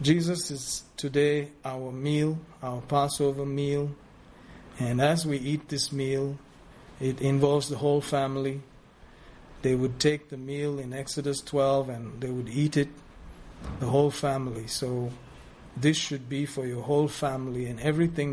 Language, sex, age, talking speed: English, male, 50-69, 145 wpm